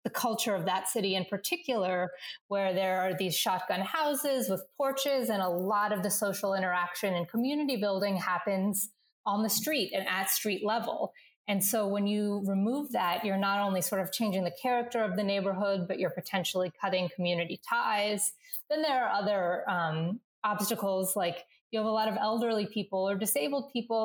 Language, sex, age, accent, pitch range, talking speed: English, female, 30-49, American, 185-235 Hz, 180 wpm